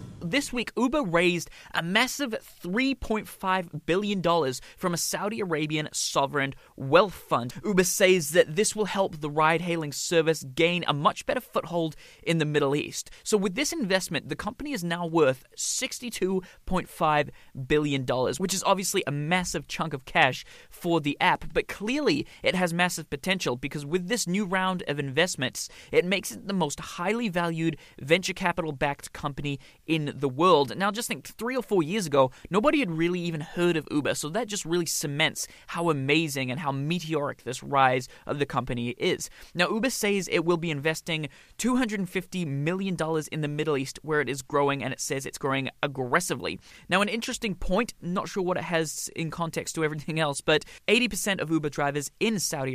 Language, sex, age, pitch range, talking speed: English, male, 20-39, 150-195 Hz, 180 wpm